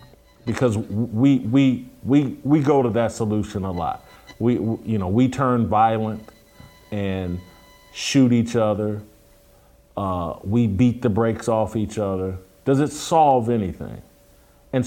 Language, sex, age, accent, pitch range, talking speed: English, male, 40-59, American, 105-130 Hz, 140 wpm